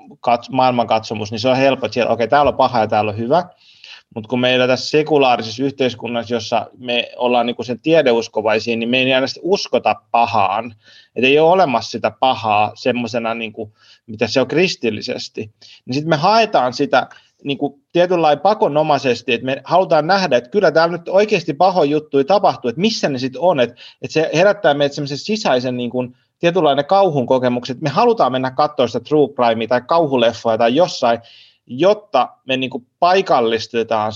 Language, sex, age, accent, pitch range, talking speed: Finnish, male, 30-49, native, 115-150 Hz, 170 wpm